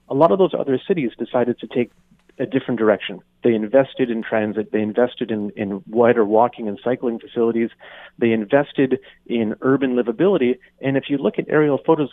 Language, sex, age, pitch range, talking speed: English, male, 30-49, 110-135 Hz, 185 wpm